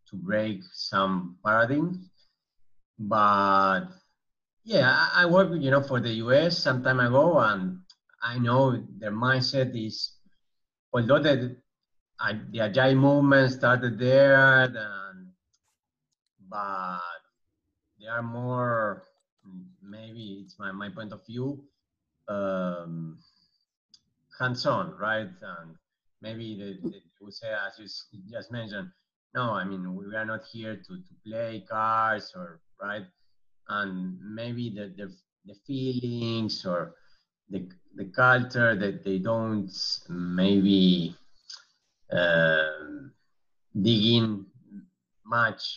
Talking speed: 110 wpm